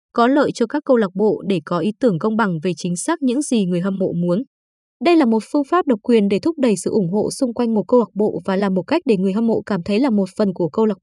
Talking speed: 310 wpm